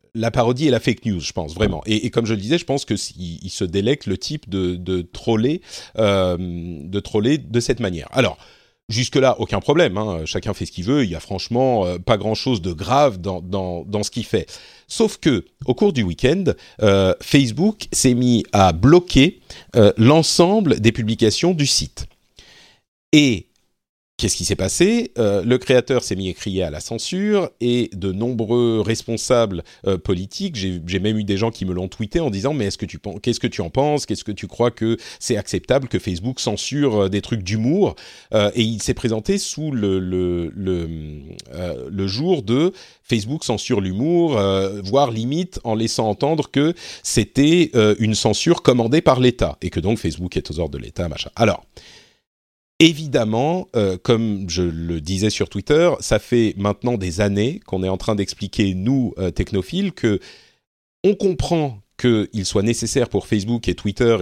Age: 40-59